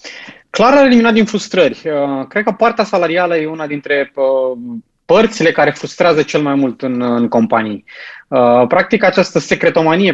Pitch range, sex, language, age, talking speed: 140-180 Hz, male, Romanian, 20-39, 155 wpm